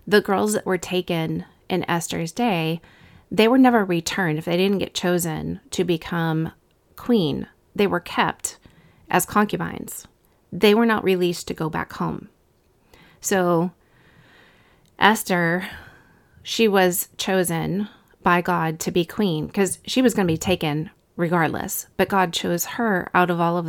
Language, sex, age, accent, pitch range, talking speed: English, female, 30-49, American, 165-195 Hz, 150 wpm